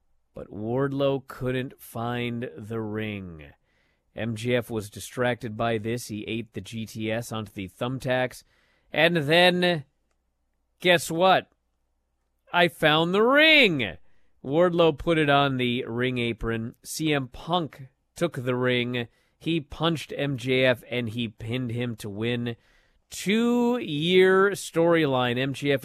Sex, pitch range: male, 115-160 Hz